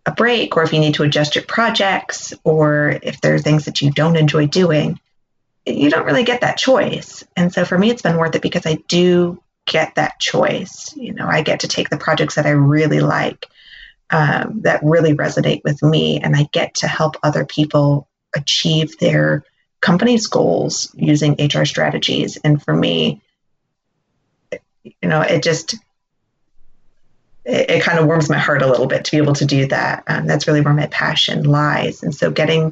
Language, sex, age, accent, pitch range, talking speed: English, female, 30-49, American, 145-165 Hz, 195 wpm